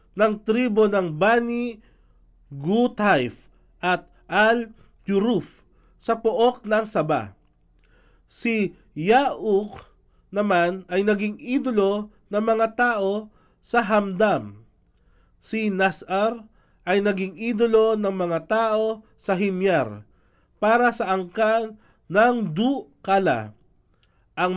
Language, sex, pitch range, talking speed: Filipino, male, 180-220 Hz, 95 wpm